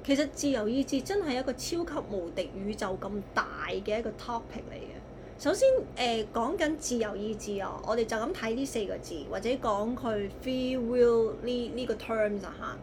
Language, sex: Chinese, female